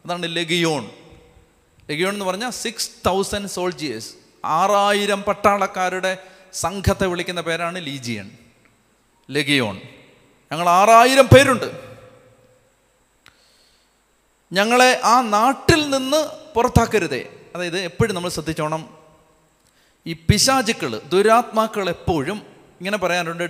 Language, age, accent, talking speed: Malayalam, 30-49, native, 85 wpm